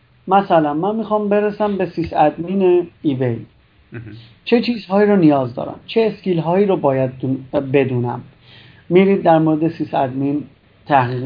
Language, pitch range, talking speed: Persian, 135-170 Hz, 135 wpm